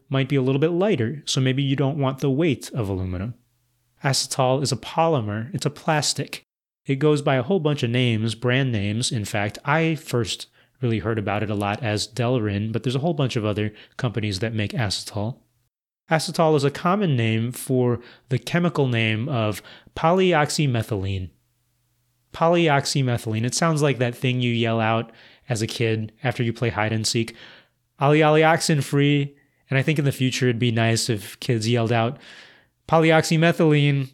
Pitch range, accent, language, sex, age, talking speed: 115-140 Hz, American, English, male, 30-49, 170 wpm